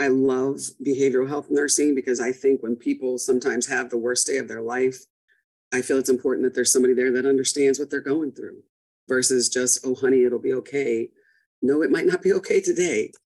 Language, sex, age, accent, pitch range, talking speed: English, female, 40-59, American, 130-155 Hz, 205 wpm